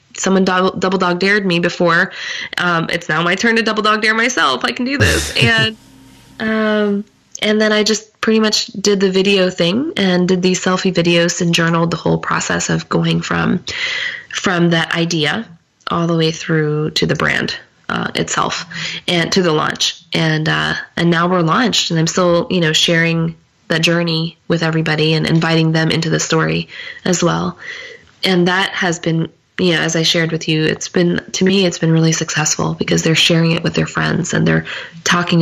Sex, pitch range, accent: female, 160-185 Hz, American